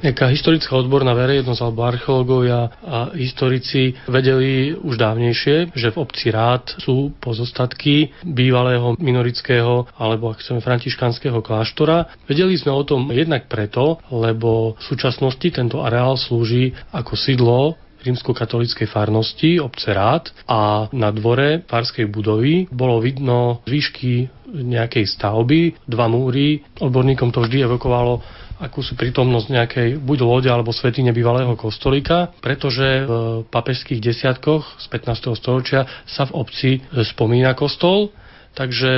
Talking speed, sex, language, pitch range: 125 wpm, male, Slovak, 120-135 Hz